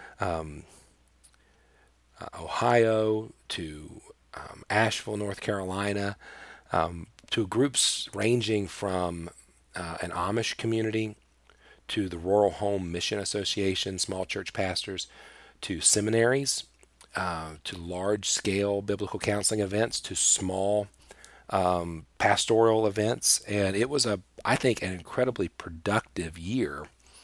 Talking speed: 110 wpm